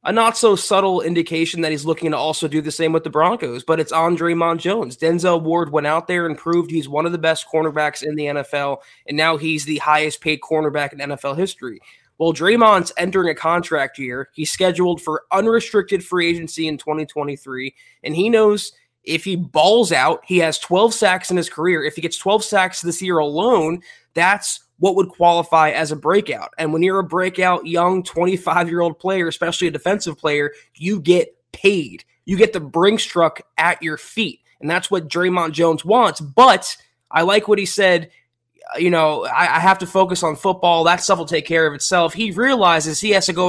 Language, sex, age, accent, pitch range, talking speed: English, male, 20-39, American, 155-185 Hz, 205 wpm